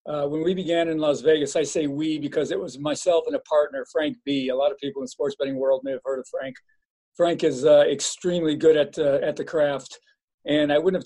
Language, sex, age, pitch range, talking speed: English, male, 50-69, 140-195 Hz, 255 wpm